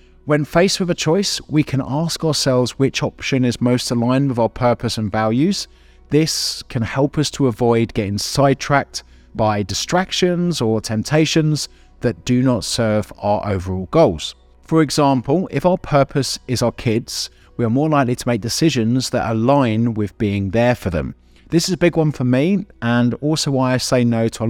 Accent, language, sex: British, English, male